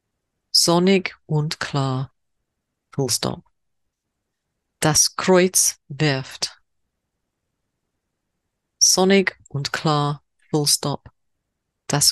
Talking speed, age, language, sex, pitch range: 70 wpm, 40-59, English, female, 130-185 Hz